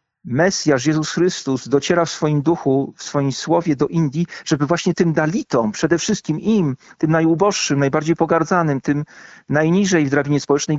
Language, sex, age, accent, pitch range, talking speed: Polish, male, 40-59, native, 150-175 Hz, 155 wpm